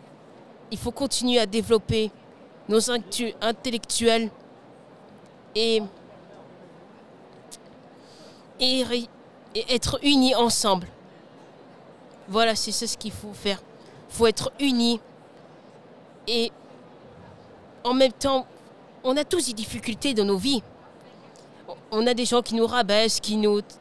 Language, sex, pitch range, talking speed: French, female, 225-265 Hz, 115 wpm